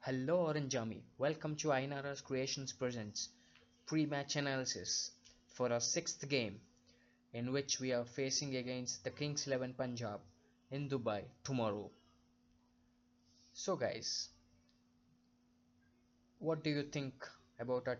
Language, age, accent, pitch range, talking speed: Telugu, 20-39, native, 115-130 Hz, 115 wpm